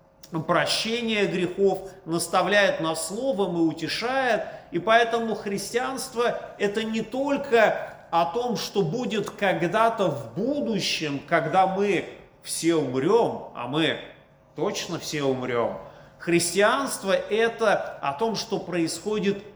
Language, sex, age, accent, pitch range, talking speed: Russian, male, 40-59, native, 160-220 Hz, 105 wpm